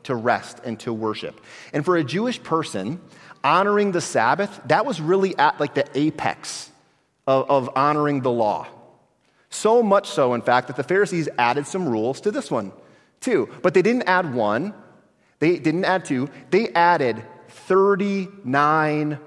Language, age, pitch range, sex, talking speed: English, 30-49, 135-190 Hz, male, 160 wpm